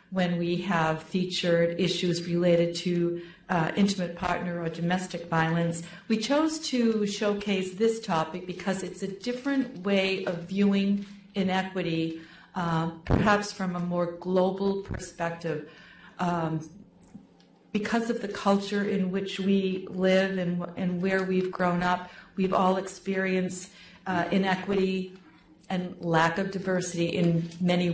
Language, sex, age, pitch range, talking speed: English, female, 40-59, 175-200 Hz, 130 wpm